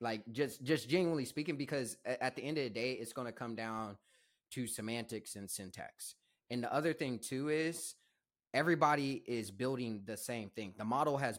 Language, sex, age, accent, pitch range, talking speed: English, male, 20-39, American, 115-140 Hz, 185 wpm